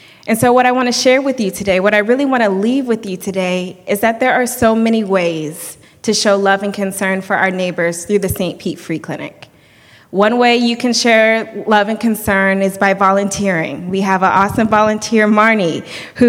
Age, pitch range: 20-39, 195-235 Hz